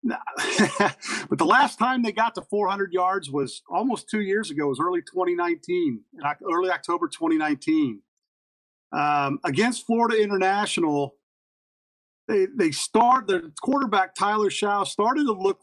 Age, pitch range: 40-59, 145-210 Hz